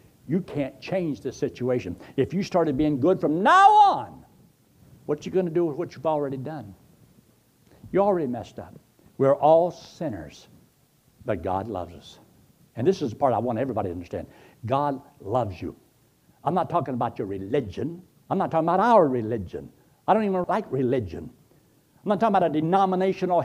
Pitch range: 125-175 Hz